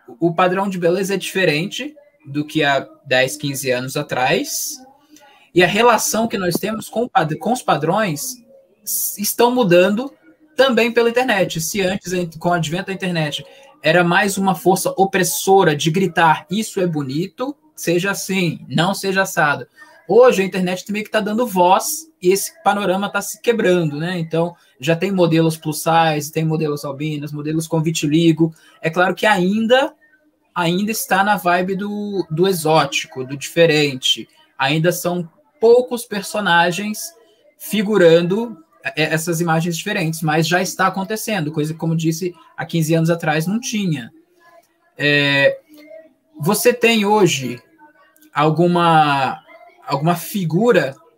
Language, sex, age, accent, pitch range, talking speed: Portuguese, male, 20-39, Brazilian, 165-220 Hz, 140 wpm